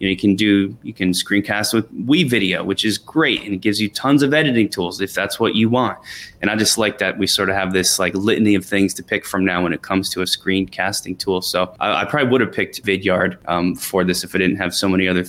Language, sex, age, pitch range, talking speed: English, male, 20-39, 95-115 Hz, 270 wpm